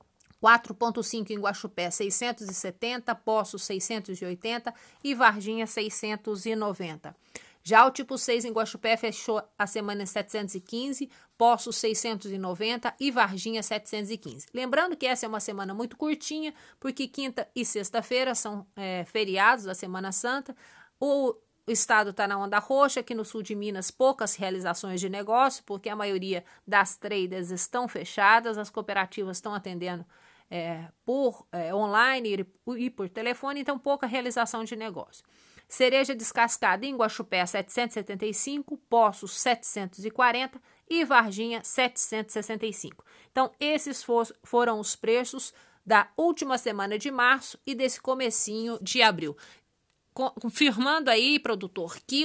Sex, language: female, Portuguese